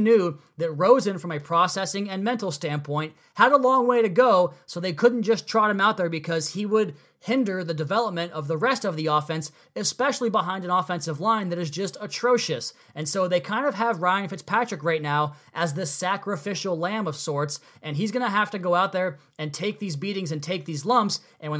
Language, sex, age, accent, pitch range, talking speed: English, male, 20-39, American, 150-195 Hz, 220 wpm